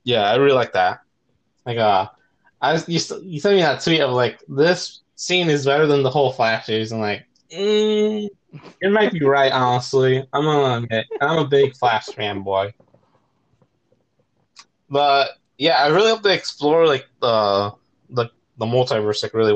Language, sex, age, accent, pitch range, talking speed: English, male, 20-39, American, 110-150 Hz, 165 wpm